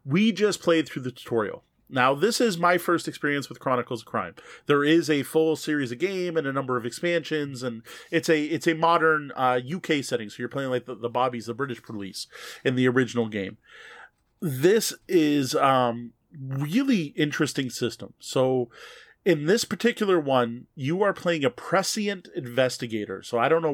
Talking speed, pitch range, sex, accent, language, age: 185 wpm, 125-165 Hz, male, American, English, 30-49